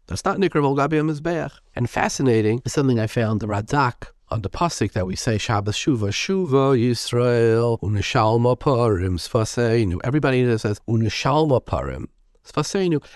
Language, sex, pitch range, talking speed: English, male, 105-145 Hz, 145 wpm